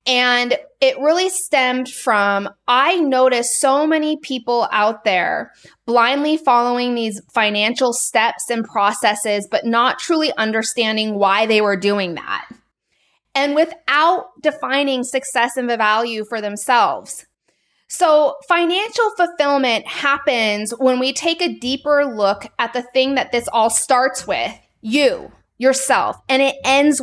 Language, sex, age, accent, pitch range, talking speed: English, female, 20-39, American, 230-295 Hz, 135 wpm